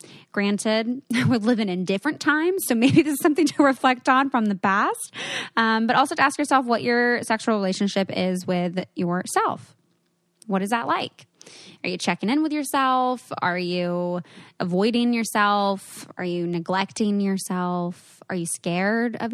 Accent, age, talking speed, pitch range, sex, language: American, 20-39, 160 wpm, 185-235 Hz, female, English